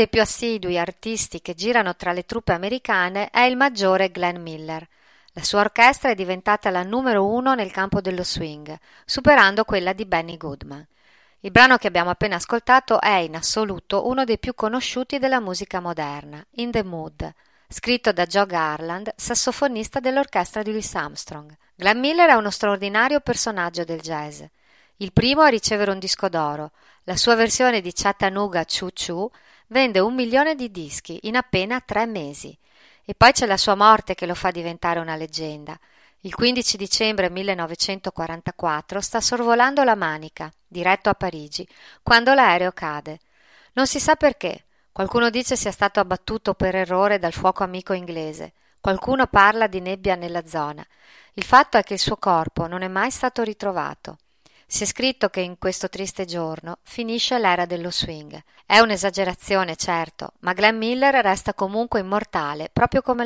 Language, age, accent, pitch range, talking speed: Italian, 40-59, native, 175-235 Hz, 165 wpm